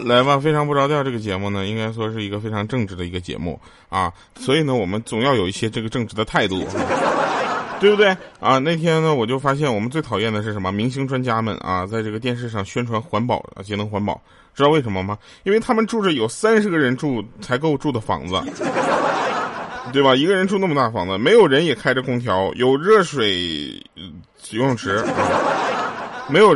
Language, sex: Chinese, male